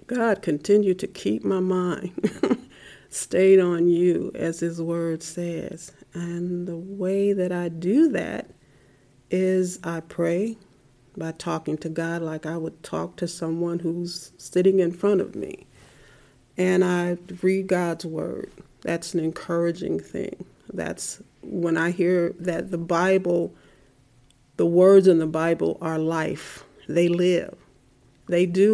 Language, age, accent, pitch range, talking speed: English, 40-59, American, 165-185 Hz, 140 wpm